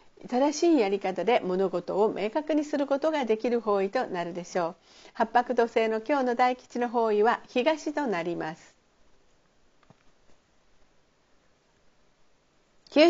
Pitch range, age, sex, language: 205-290 Hz, 50-69, female, Japanese